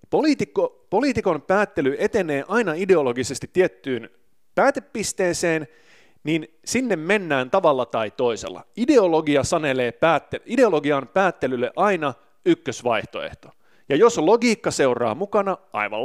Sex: male